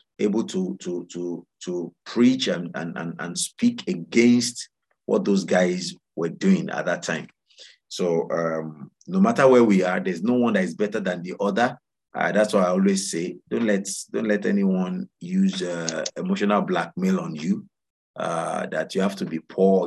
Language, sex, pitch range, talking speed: English, male, 85-130 Hz, 180 wpm